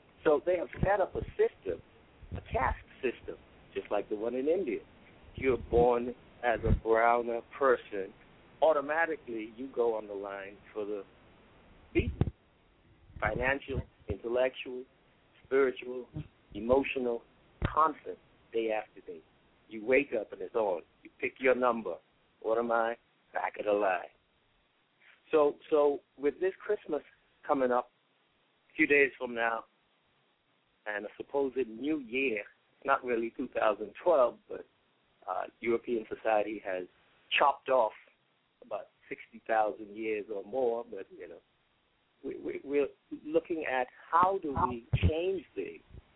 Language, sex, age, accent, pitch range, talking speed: English, male, 60-79, American, 115-160 Hz, 130 wpm